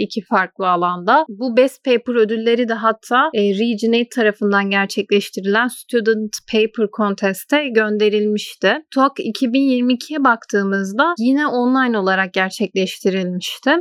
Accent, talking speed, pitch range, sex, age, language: native, 100 wpm, 205-250 Hz, female, 30-49, Turkish